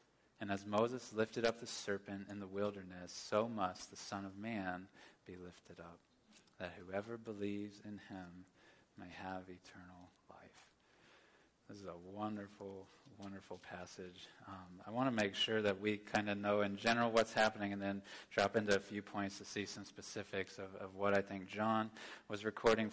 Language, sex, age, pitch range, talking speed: English, male, 30-49, 100-110 Hz, 180 wpm